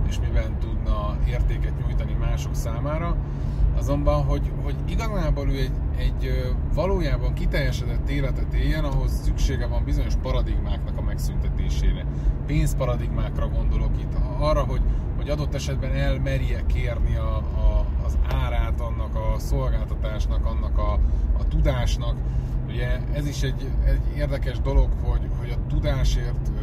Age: 30-49